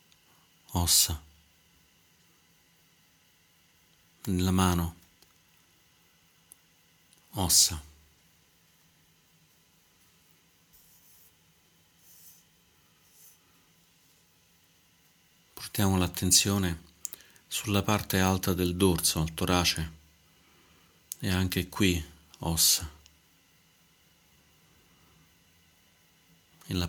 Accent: native